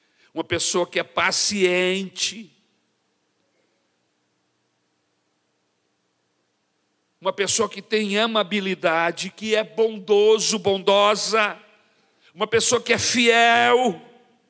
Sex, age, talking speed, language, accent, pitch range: male, 60-79, 80 wpm, Portuguese, Brazilian, 170-250 Hz